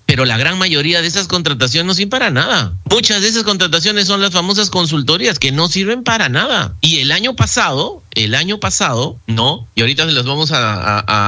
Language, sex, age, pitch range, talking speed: Spanish, male, 40-59, 125-200 Hz, 195 wpm